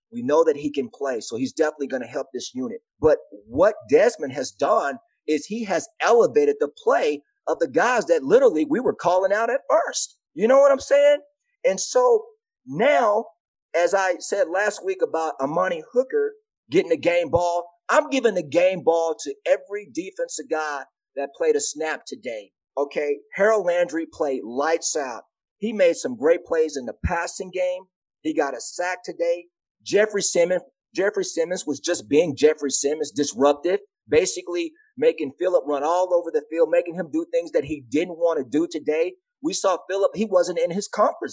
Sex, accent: male, American